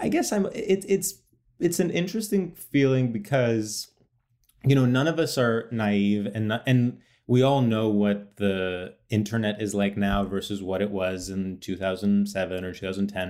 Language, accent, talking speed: English, American, 175 wpm